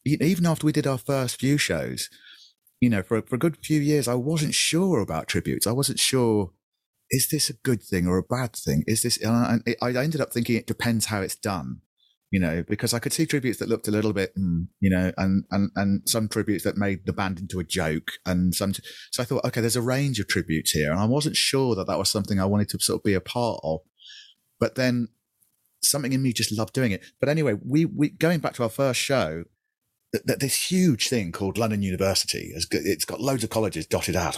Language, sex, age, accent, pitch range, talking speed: English, male, 30-49, British, 95-125 Hz, 235 wpm